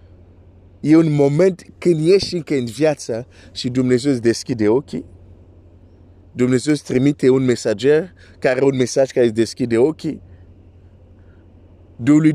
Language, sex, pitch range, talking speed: Romanian, male, 90-130 Hz, 125 wpm